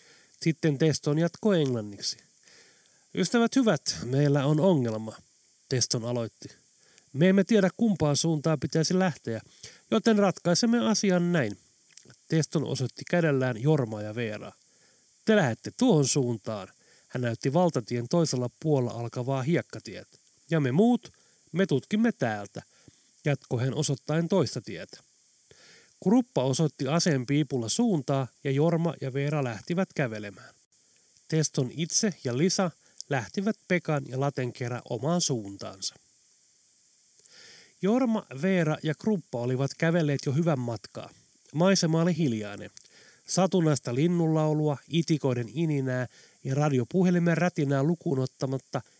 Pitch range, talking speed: 125-175 Hz, 110 wpm